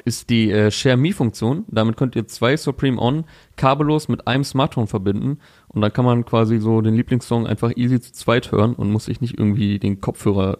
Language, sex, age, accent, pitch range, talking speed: German, male, 30-49, German, 105-135 Hz, 200 wpm